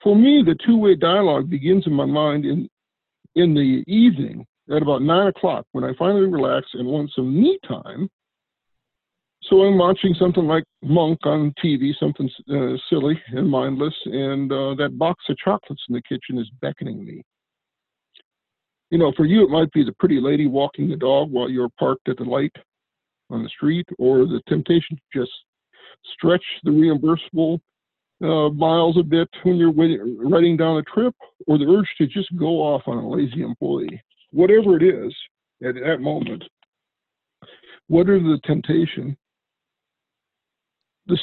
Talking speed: 165 wpm